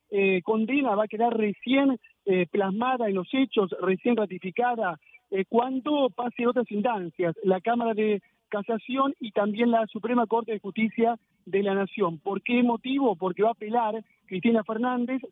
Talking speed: 160 wpm